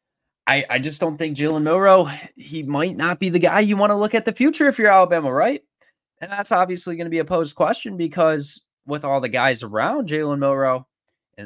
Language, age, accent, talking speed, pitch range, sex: English, 20-39, American, 215 wpm, 110-165 Hz, male